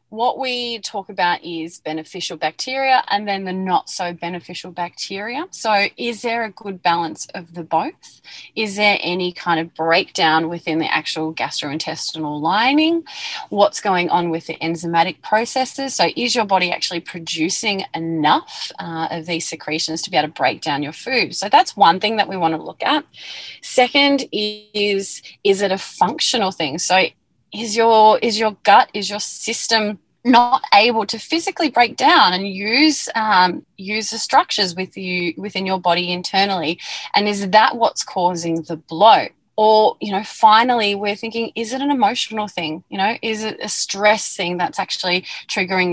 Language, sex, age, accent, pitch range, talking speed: English, female, 20-39, Australian, 175-230 Hz, 170 wpm